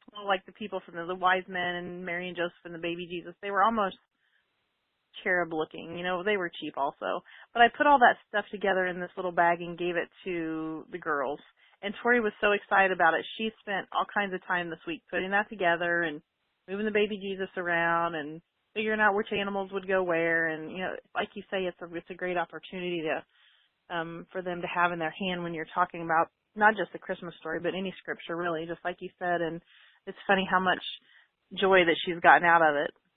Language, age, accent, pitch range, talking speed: English, 30-49, American, 170-190 Hz, 230 wpm